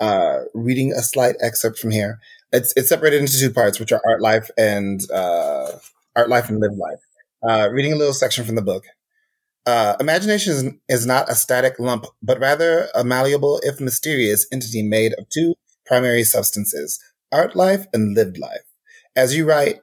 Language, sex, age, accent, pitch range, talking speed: English, male, 30-49, American, 110-130 Hz, 180 wpm